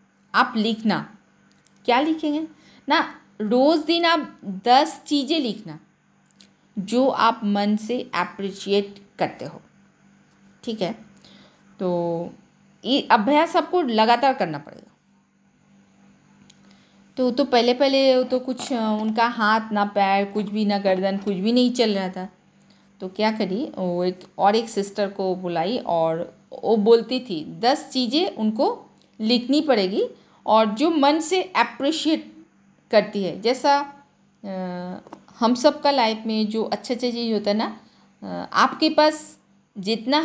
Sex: female